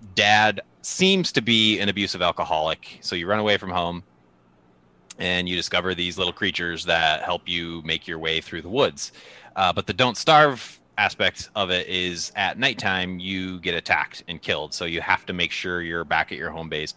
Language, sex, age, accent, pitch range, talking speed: English, male, 30-49, American, 80-105 Hz, 200 wpm